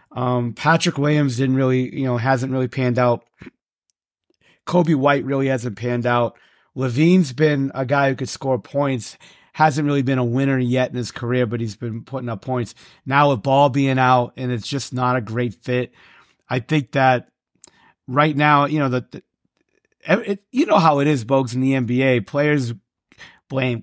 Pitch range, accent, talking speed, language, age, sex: 125-150 Hz, American, 185 wpm, English, 30-49, male